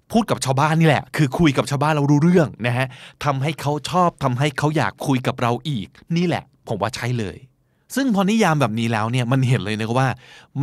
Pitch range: 120-155 Hz